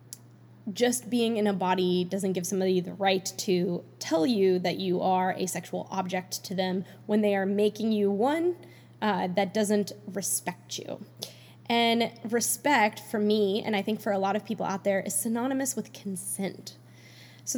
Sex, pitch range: female, 195-235 Hz